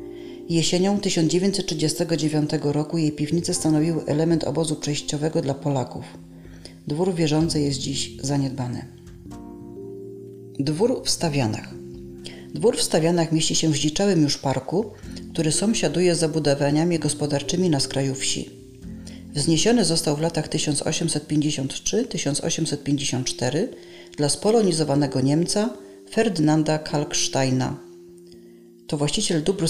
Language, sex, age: Polish, female, 40-59